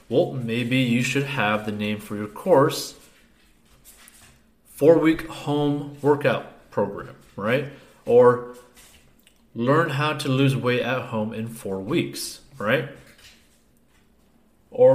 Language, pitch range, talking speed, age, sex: English, 115-145 Hz, 110 wpm, 30-49, male